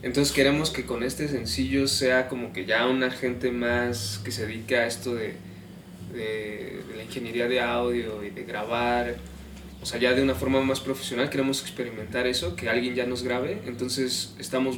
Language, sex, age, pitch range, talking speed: Spanish, male, 20-39, 120-135 Hz, 185 wpm